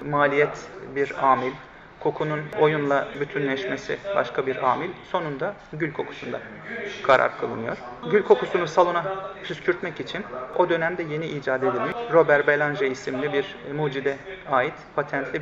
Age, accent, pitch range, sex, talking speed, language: 40-59, native, 140-170 Hz, male, 120 wpm, Turkish